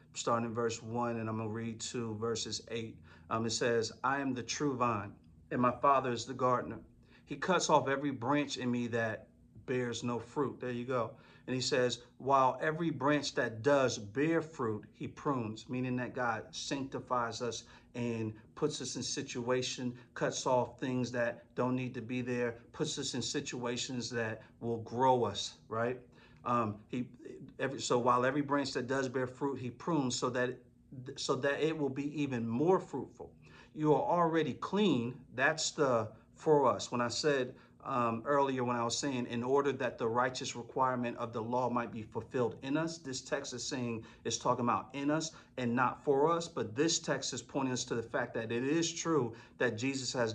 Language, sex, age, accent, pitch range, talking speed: English, male, 50-69, American, 115-135 Hz, 195 wpm